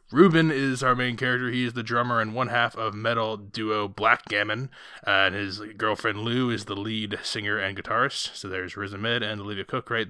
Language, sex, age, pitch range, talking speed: English, male, 20-39, 105-130 Hz, 210 wpm